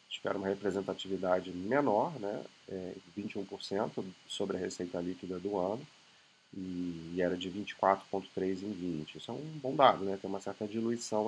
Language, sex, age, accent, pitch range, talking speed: Portuguese, male, 30-49, Brazilian, 90-110 Hz, 150 wpm